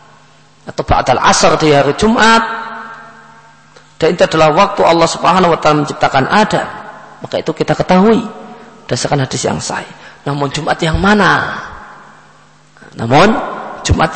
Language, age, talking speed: Indonesian, 40-59, 125 wpm